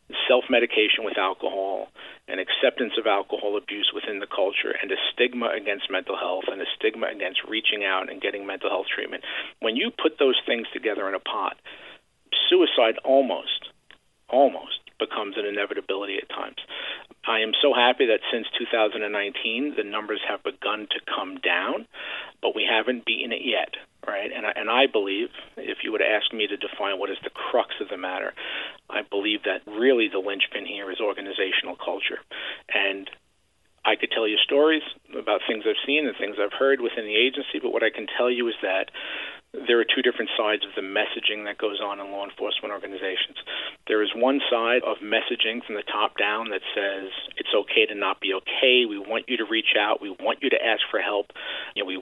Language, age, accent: English, 50-69, American